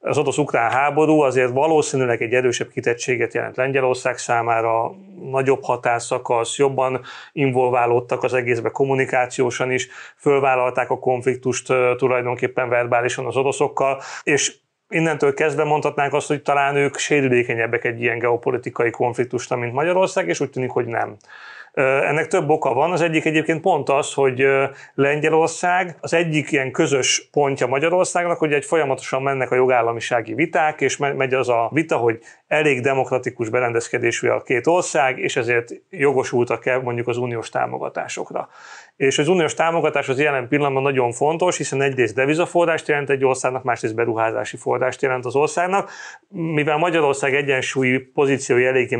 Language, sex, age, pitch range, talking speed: Hungarian, male, 30-49, 125-150 Hz, 140 wpm